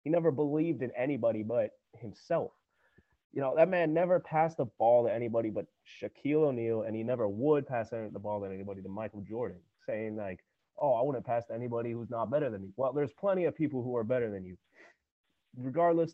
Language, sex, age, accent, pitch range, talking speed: English, male, 30-49, American, 110-150 Hz, 210 wpm